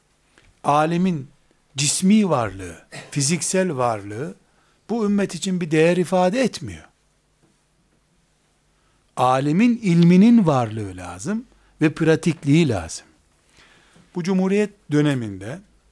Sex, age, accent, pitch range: male, 60-79, native, 125-170 Hz